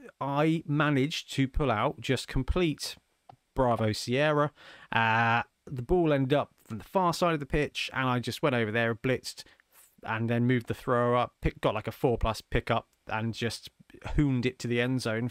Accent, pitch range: British, 105-140 Hz